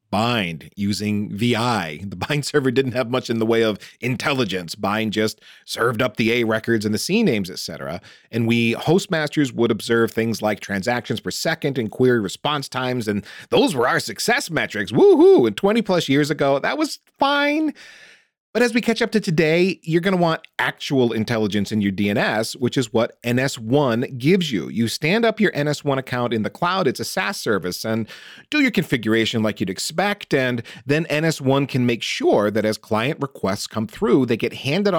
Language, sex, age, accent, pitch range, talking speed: English, male, 40-59, American, 110-160 Hz, 190 wpm